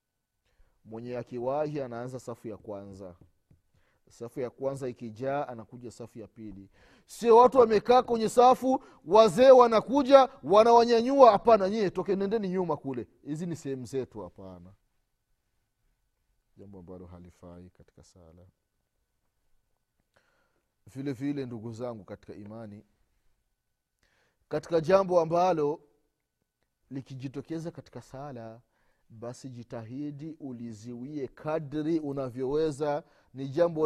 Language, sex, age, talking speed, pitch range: Swahili, male, 30-49, 100 wpm, 115-170 Hz